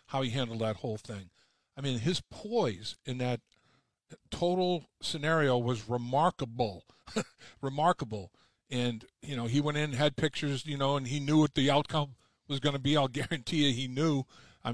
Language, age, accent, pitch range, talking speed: English, 50-69, American, 120-145 Hz, 175 wpm